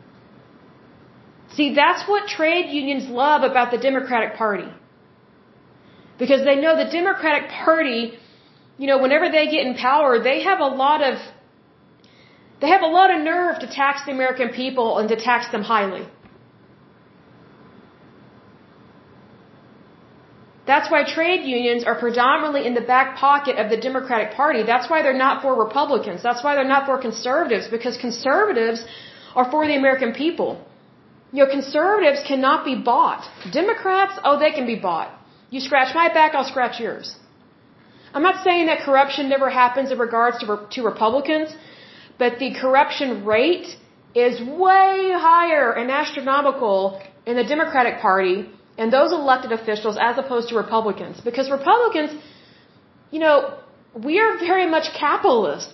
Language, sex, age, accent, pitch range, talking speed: Hindi, female, 30-49, American, 240-310 Hz, 150 wpm